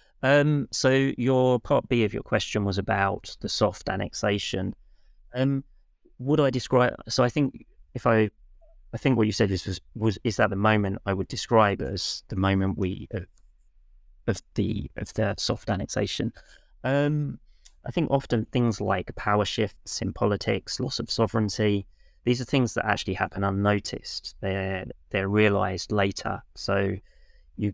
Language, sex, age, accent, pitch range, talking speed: English, male, 30-49, British, 95-120 Hz, 160 wpm